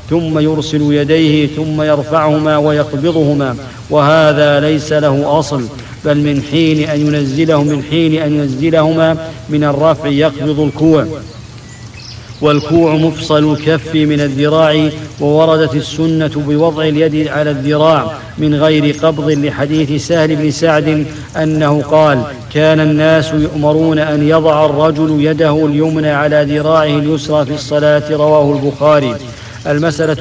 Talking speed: 110 wpm